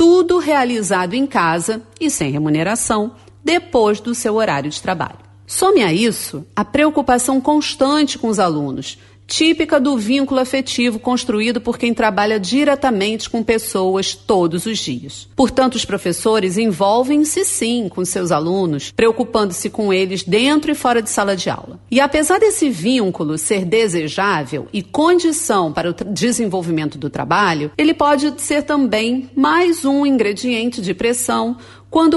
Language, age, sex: Portuguese, 40-59, female